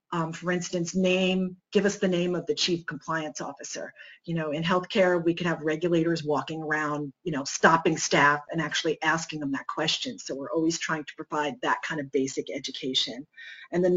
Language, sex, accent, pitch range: English, female, American, 160-200 Hz